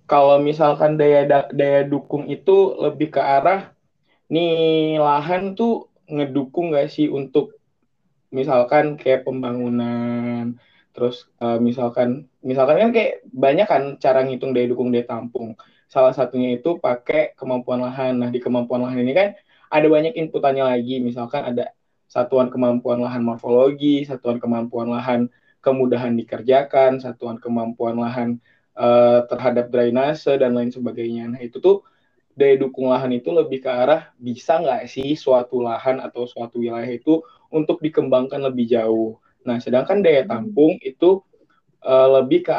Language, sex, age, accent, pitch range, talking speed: Indonesian, male, 20-39, native, 120-150 Hz, 135 wpm